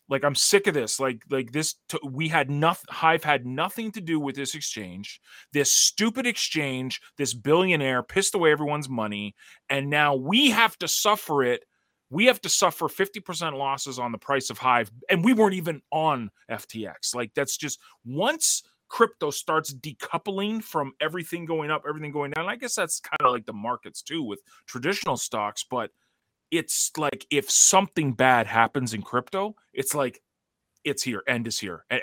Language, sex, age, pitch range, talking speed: English, male, 30-49, 125-170 Hz, 185 wpm